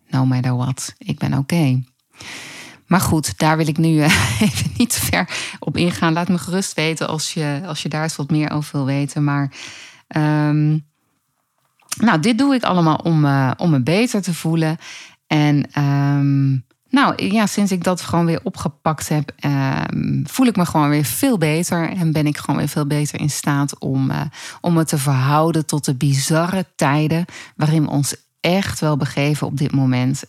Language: Dutch